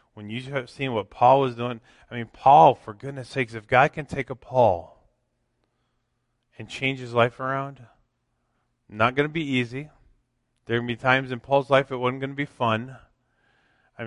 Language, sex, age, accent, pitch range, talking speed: English, male, 20-39, American, 115-155 Hz, 195 wpm